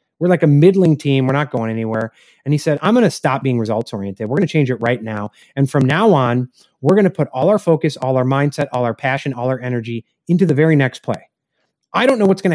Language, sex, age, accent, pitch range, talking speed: English, male, 30-49, American, 130-175 Hz, 265 wpm